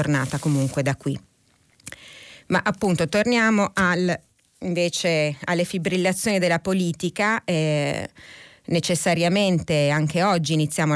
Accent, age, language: native, 30-49, Italian